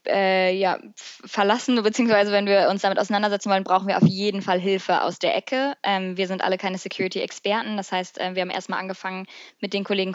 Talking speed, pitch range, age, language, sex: 205 wpm, 185-210 Hz, 20-39, German, female